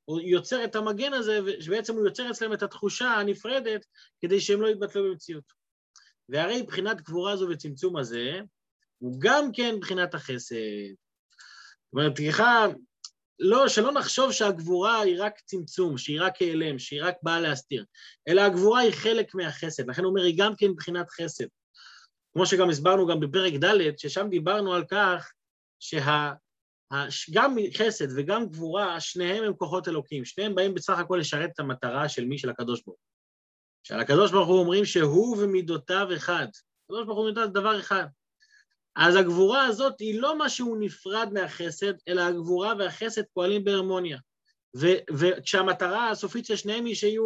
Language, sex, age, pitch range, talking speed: Hebrew, male, 30-49, 165-210 Hz, 155 wpm